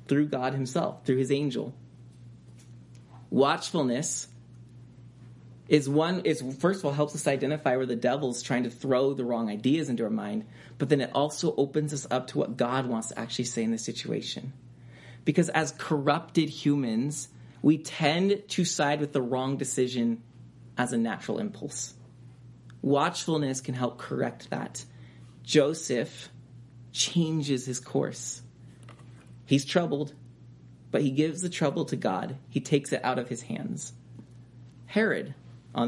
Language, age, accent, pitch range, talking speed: English, 30-49, American, 120-170 Hz, 145 wpm